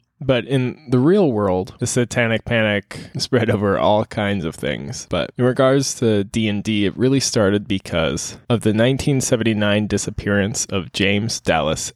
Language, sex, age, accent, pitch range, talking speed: English, male, 20-39, American, 100-125 Hz, 150 wpm